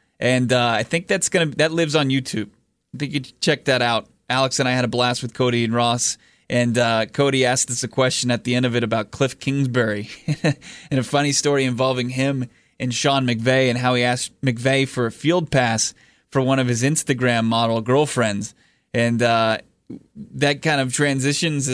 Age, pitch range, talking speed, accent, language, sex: 20-39, 125-155 Hz, 200 wpm, American, English, male